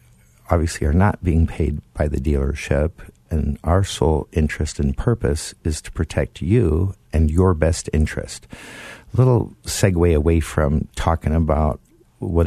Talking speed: 145 wpm